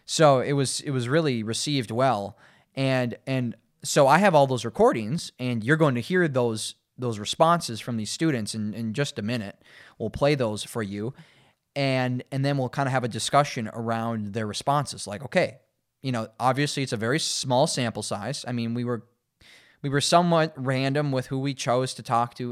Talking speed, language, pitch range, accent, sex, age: 200 wpm, English, 110-135 Hz, American, male, 20-39